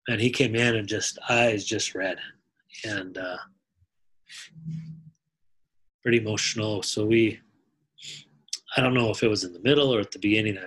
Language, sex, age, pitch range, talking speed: English, male, 30-49, 100-120 Hz, 155 wpm